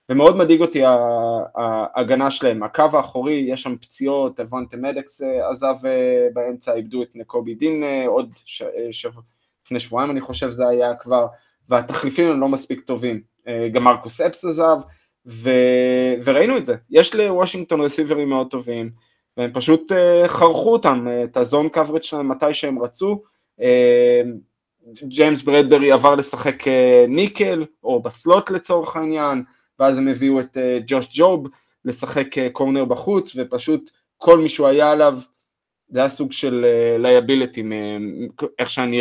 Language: Hebrew